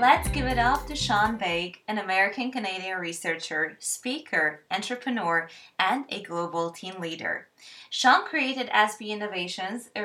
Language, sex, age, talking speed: English, female, 20-39, 130 wpm